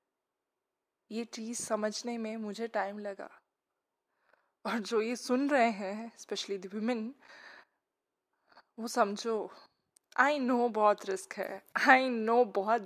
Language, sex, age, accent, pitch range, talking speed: Hindi, female, 20-39, native, 215-290 Hz, 115 wpm